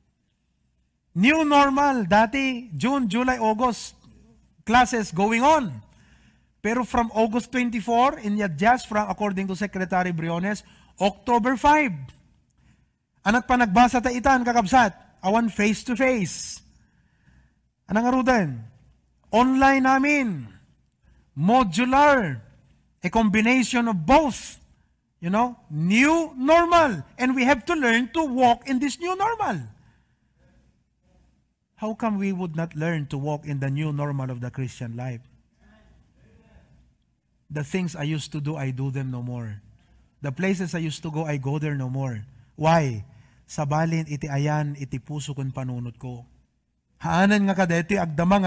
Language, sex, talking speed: English, male, 125 wpm